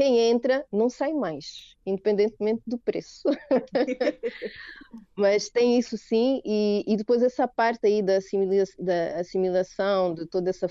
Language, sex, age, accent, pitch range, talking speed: Portuguese, female, 30-49, Brazilian, 190-245 Hz, 140 wpm